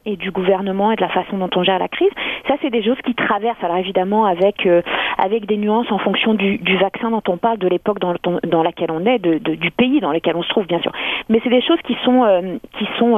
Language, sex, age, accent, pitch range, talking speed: French, female, 40-59, French, 185-235 Hz, 280 wpm